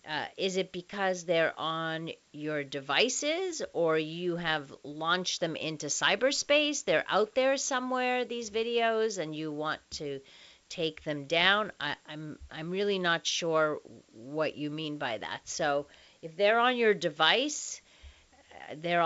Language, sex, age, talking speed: English, female, 40-59, 145 wpm